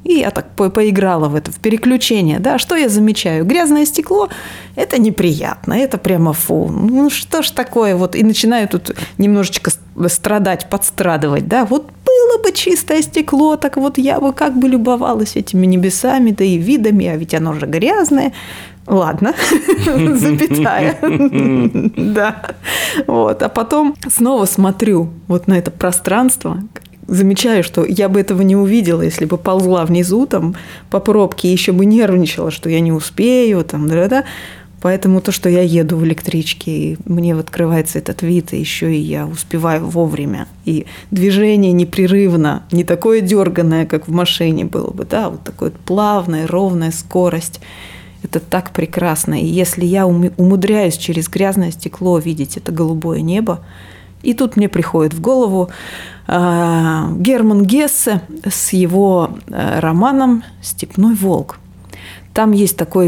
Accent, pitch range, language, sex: native, 170-225 Hz, Russian, female